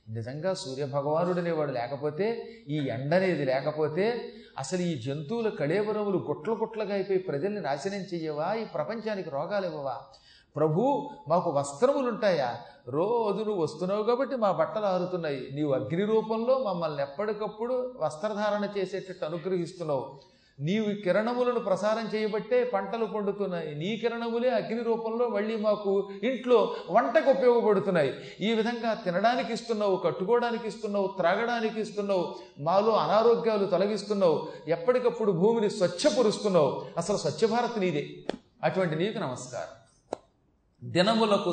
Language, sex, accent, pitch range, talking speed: Telugu, male, native, 155-220 Hz, 110 wpm